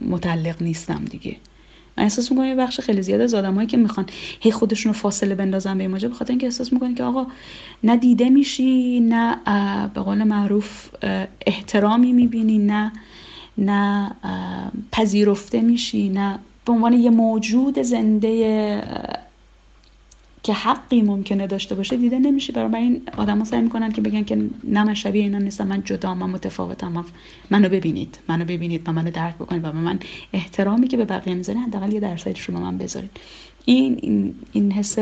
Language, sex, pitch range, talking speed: Persian, female, 180-230 Hz, 155 wpm